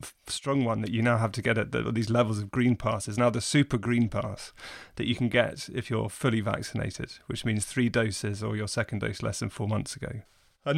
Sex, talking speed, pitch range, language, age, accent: male, 240 wpm, 110-130 Hz, English, 30-49, British